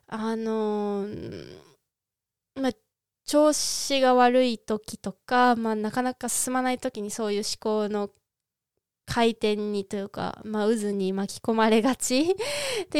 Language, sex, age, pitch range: Japanese, female, 20-39, 215-275 Hz